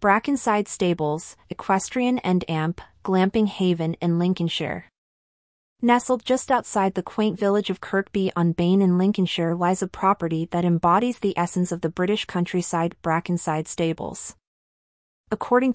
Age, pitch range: 30-49, 170-205 Hz